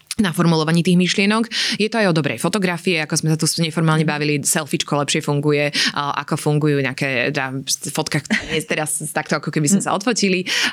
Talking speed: 185 wpm